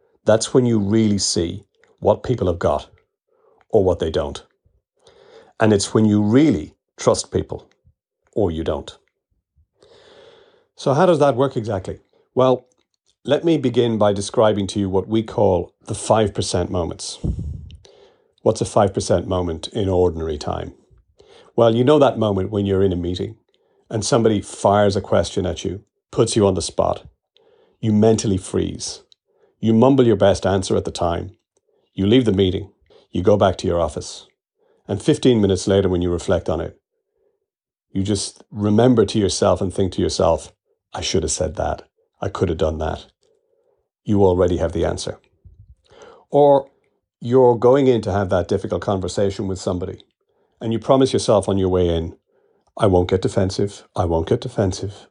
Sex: male